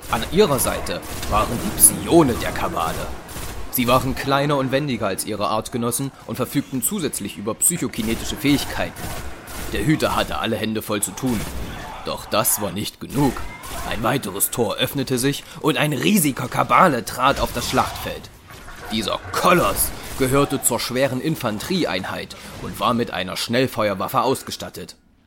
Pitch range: 105-135 Hz